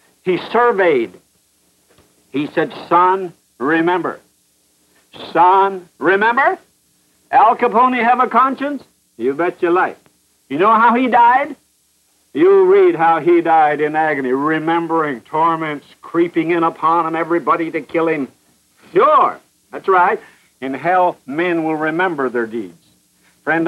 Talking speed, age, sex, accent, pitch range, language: 125 wpm, 60-79, male, American, 150-195 Hz, English